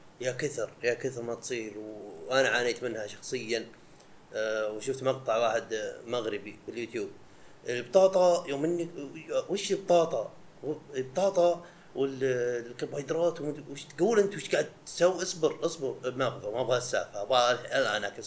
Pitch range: 120-170 Hz